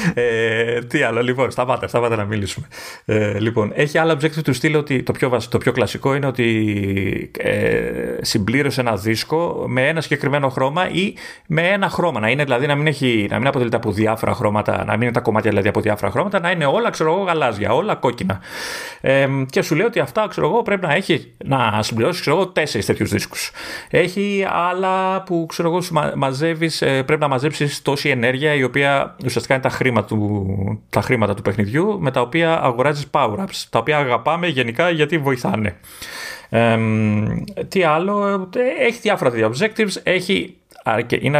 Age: 30-49